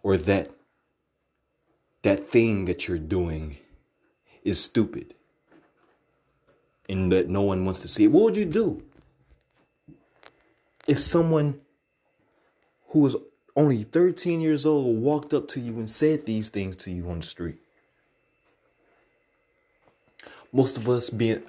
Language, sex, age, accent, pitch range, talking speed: English, male, 30-49, American, 100-135 Hz, 130 wpm